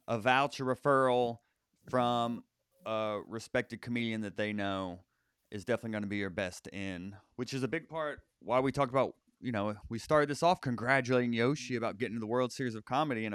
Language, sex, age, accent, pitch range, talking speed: English, male, 30-49, American, 105-145 Hz, 200 wpm